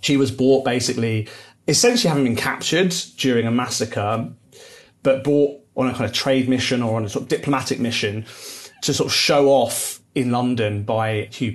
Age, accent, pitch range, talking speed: 30-49, British, 110-135 Hz, 180 wpm